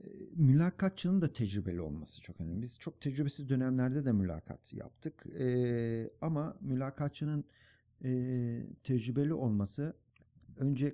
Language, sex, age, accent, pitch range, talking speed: Turkish, male, 50-69, native, 110-150 Hz, 110 wpm